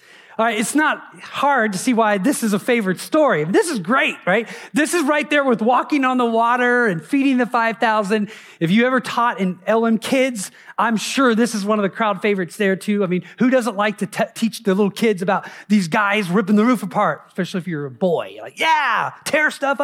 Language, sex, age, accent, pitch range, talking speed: English, male, 30-49, American, 195-260 Hz, 225 wpm